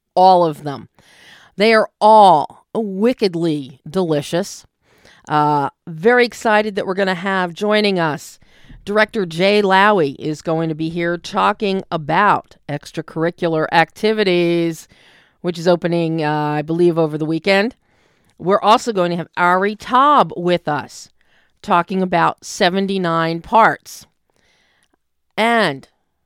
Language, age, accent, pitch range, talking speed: English, 40-59, American, 165-215 Hz, 120 wpm